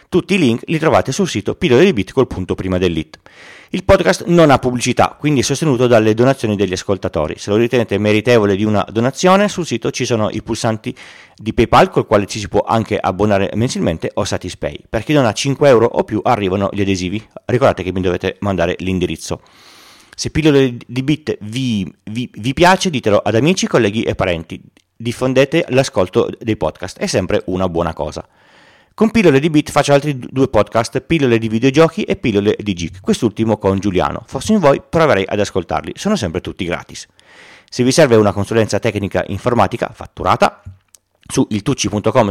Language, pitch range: Italian, 100-130 Hz